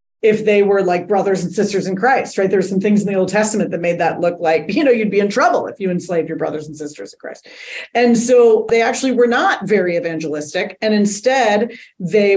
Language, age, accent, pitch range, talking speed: English, 30-49, American, 190-255 Hz, 235 wpm